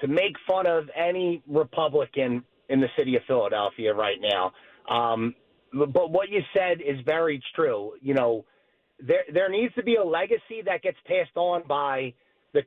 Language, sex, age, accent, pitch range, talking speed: English, male, 30-49, American, 155-215 Hz, 170 wpm